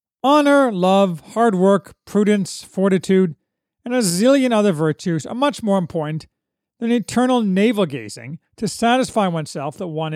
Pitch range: 170-240 Hz